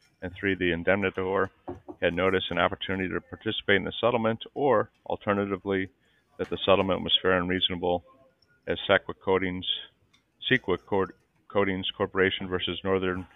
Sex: male